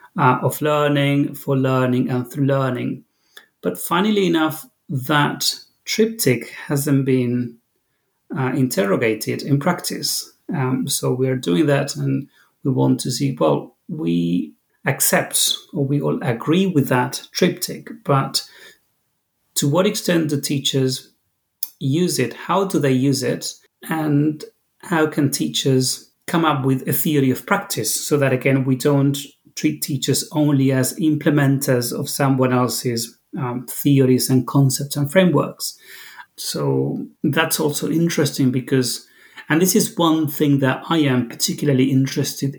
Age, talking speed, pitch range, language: 30-49, 140 wpm, 130-150 Hz, English